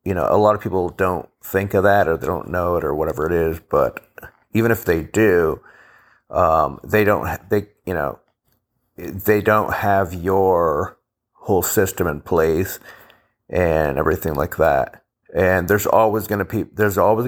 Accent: American